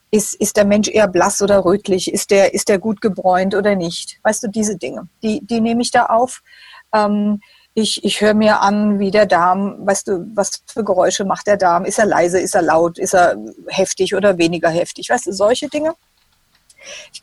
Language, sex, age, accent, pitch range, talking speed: German, female, 50-69, German, 185-220 Hz, 210 wpm